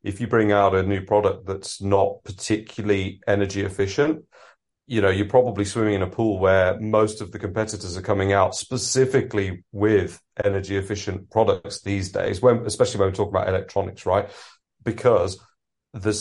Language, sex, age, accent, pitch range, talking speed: English, male, 40-59, British, 95-105 Hz, 165 wpm